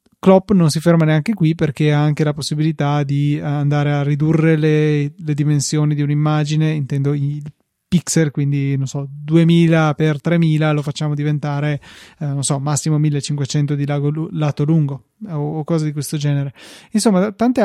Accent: native